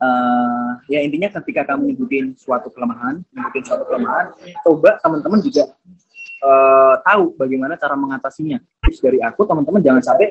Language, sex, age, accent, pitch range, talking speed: Indonesian, male, 20-39, native, 145-225 Hz, 145 wpm